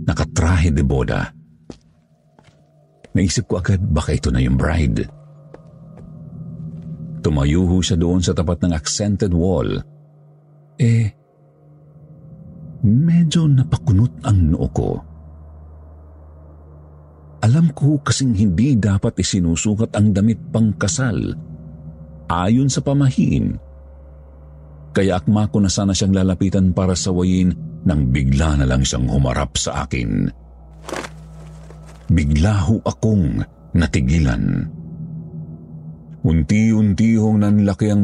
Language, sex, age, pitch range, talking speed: Filipino, male, 50-69, 80-120 Hz, 100 wpm